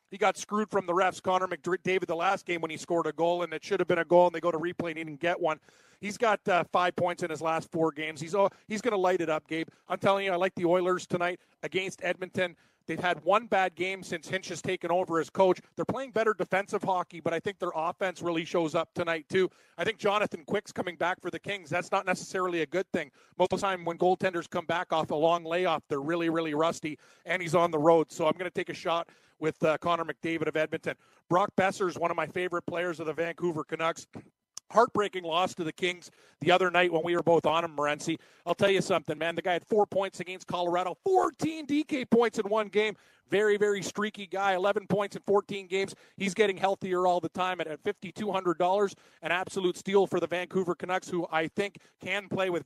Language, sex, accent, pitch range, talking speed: English, male, American, 165-195 Hz, 245 wpm